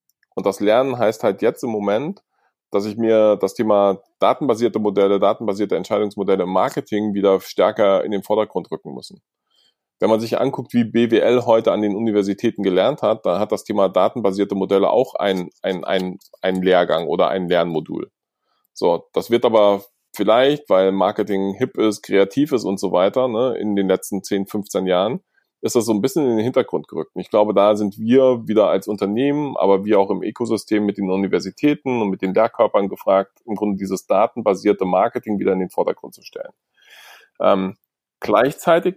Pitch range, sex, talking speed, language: 100-125 Hz, male, 175 wpm, German